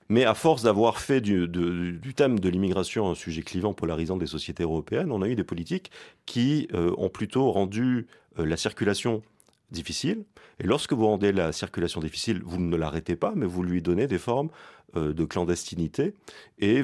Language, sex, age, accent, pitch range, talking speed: French, male, 40-59, French, 85-110 Hz, 185 wpm